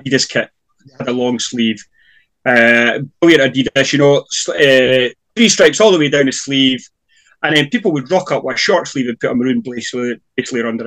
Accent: British